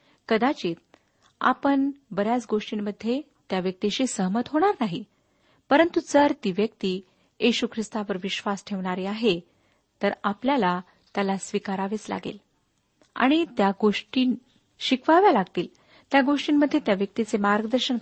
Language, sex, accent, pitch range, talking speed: Marathi, female, native, 195-255 Hz, 105 wpm